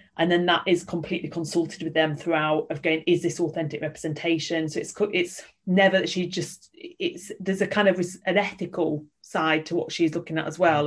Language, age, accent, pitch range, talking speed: English, 30-49, British, 155-175 Hz, 205 wpm